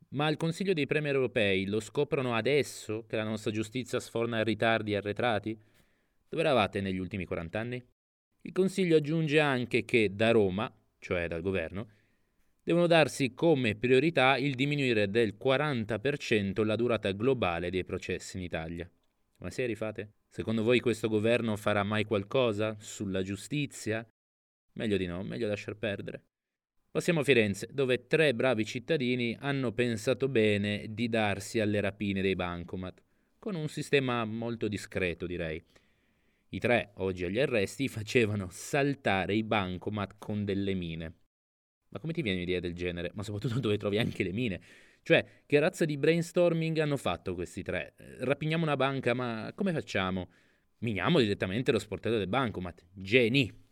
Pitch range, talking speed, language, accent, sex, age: 95-130 Hz, 150 wpm, Italian, native, male, 30-49